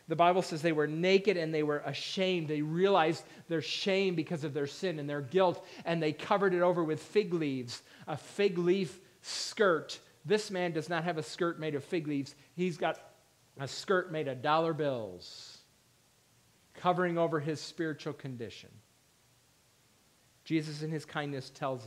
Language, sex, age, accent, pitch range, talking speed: English, male, 40-59, American, 135-165 Hz, 170 wpm